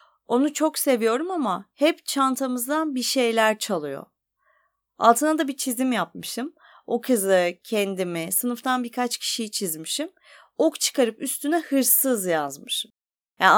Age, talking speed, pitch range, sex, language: 30-49, 120 wpm, 190-275 Hz, female, Turkish